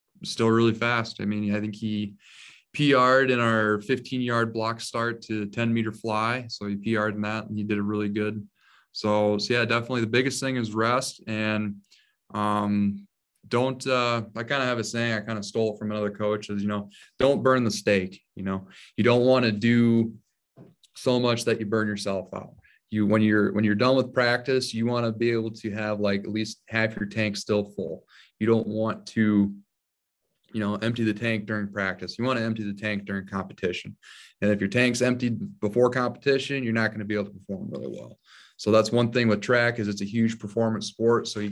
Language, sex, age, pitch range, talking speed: English, male, 20-39, 105-120 Hz, 215 wpm